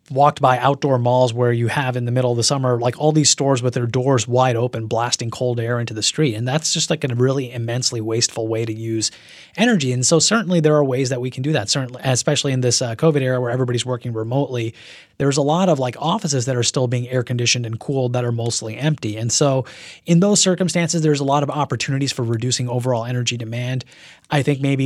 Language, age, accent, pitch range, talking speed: English, 30-49, American, 120-140 Hz, 235 wpm